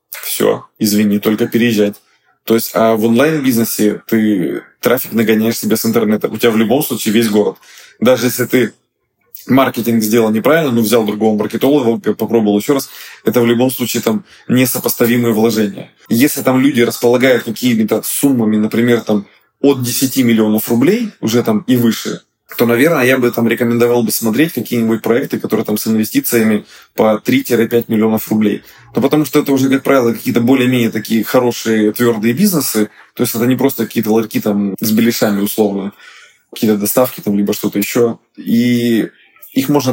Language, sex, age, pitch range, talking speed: Russian, male, 20-39, 110-125 Hz, 160 wpm